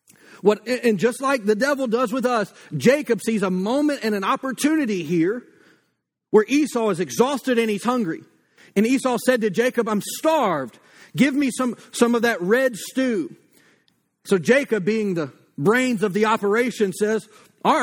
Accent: American